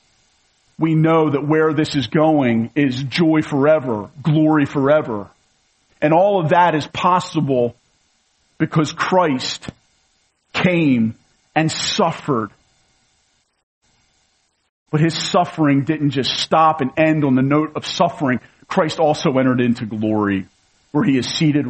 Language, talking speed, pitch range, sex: English, 125 wpm, 100-155 Hz, male